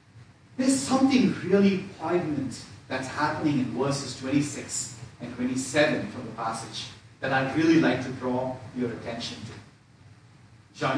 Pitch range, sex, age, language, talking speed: 125-195 Hz, male, 40-59, English, 125 wpm